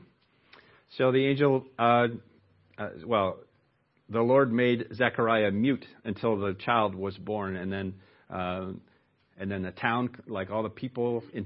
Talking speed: 145 wpm